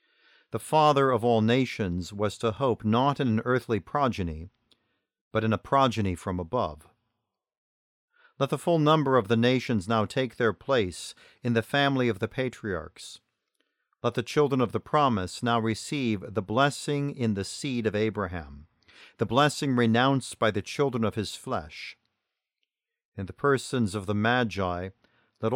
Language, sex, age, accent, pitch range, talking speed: English, male, 50-69, American, 105-130 Hz, 155 wpm